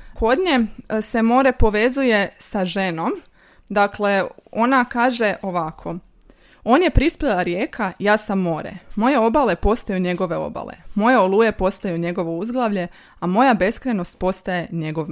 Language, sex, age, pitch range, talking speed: Croatian, female, 20-39, 190-240 Hz, 125 wpm